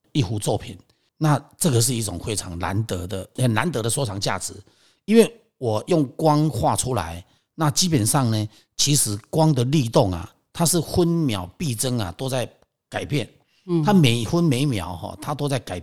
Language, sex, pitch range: Chinese, male, 105-145 Hz